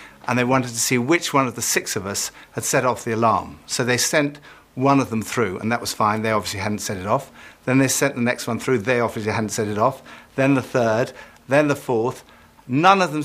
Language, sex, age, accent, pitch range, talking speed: English, male, 60-79, British, 120-155 Hz, 255 wpm